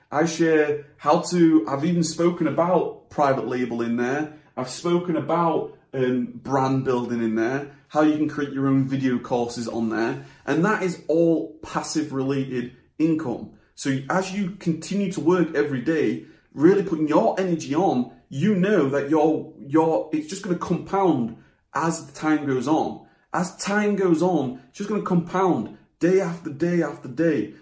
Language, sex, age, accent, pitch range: Japanese, male, 30-49, British, 135-175 Hz